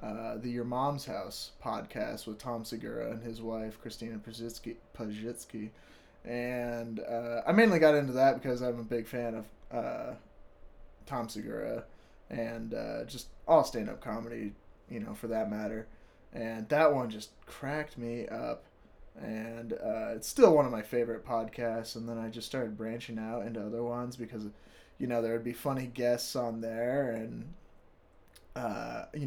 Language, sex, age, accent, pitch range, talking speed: English, male, 20-39, American, 110-120 Hz, 165 wpm